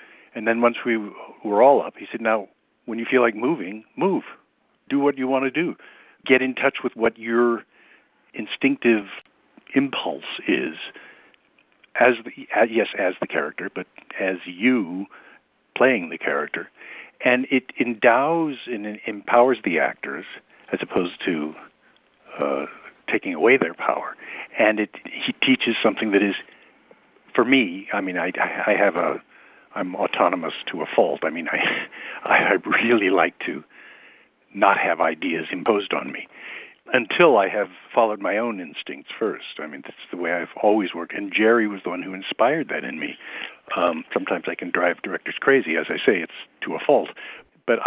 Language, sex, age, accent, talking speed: English, male, 60-79, American, 165 wpm